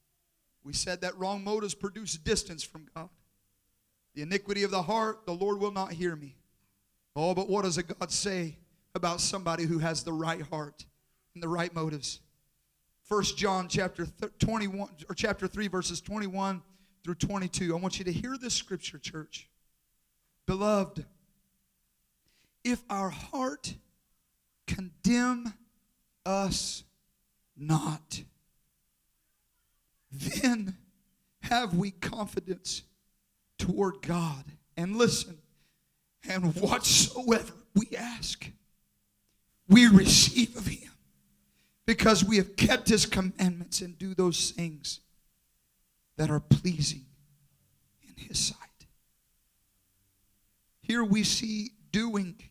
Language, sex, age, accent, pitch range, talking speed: English, male, 40-59, American, 150-200 Hz, 115 wpm